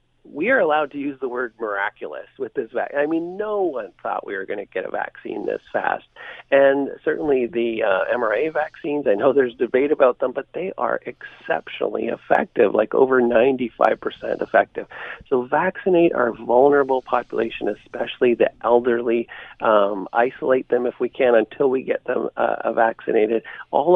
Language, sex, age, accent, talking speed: English, male, 40-59, American, 170 wpm